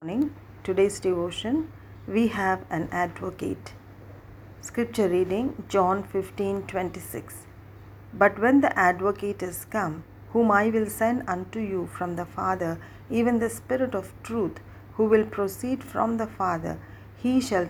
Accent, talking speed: Indian, 135 wpm